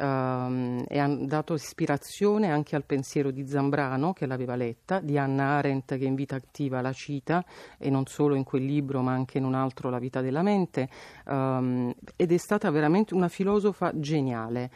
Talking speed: 185 wpm